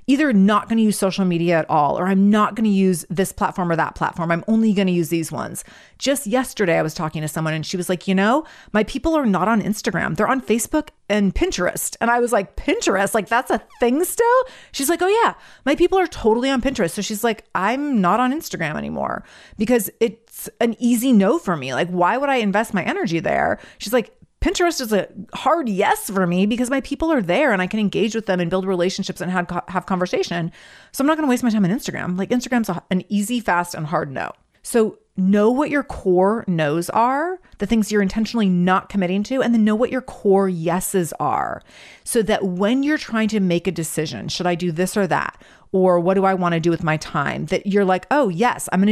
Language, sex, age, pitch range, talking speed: English, female, 30-49, 180-240 Hz, 235 wpm